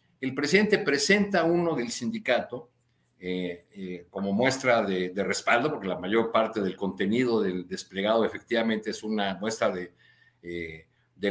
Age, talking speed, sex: 50-69, 145 wpm, male